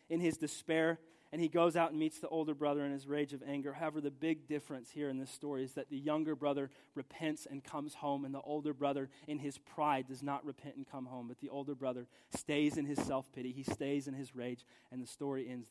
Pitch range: 140-175 Hz